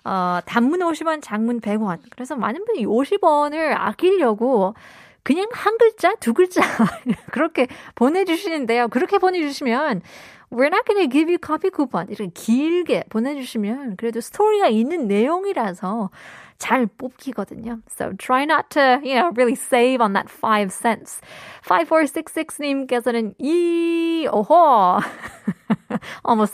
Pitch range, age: 210-295 Hz, 20-39